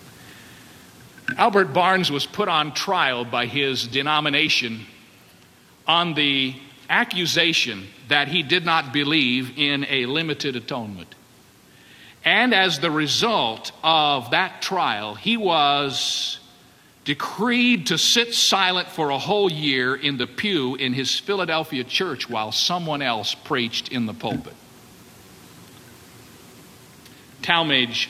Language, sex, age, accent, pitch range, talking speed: English, male, 50-69, American, 130-170 Hz, 115 wpm